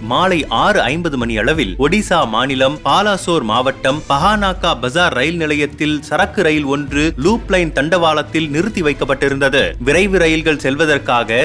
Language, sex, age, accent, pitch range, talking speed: Tamil, male, 30-49, native, 140-175 Hz, 125 wpm